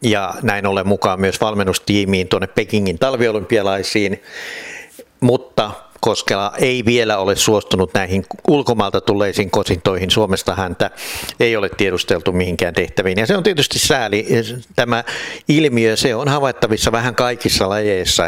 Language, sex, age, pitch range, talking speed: Finnish, male, 60-79, 100-125 Hz, 130 wpm